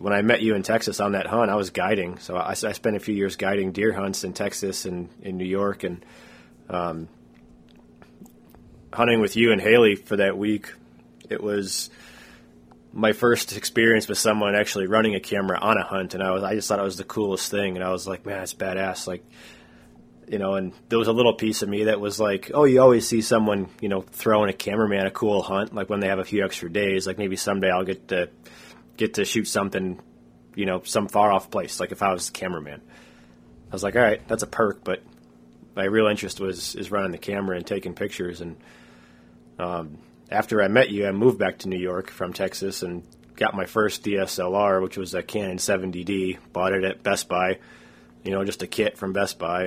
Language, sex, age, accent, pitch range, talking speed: English, male, 20-39, American, 80-105 Hz, 220 wpm